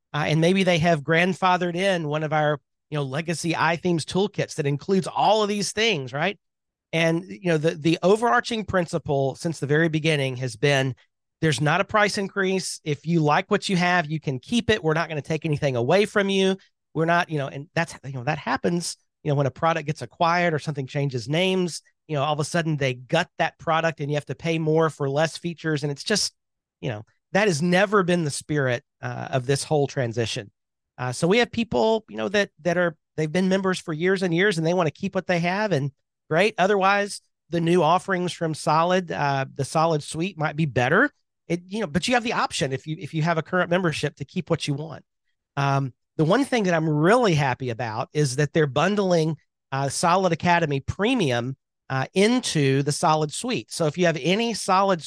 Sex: male